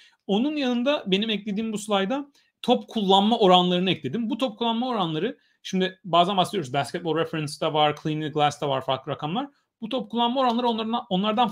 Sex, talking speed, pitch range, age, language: male, 160 wpm, 165-245 Hz, 40-59, Turkish